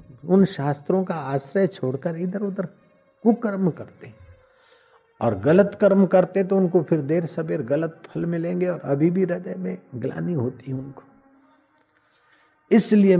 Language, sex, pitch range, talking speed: Hindi, male, 125-170 Hz, 135 wpm